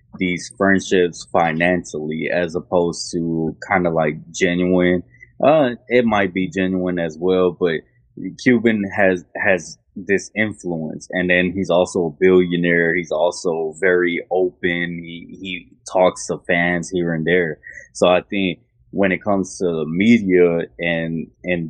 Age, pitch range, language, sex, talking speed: 20-39, 85-95 Hz, English, male, 145 wpm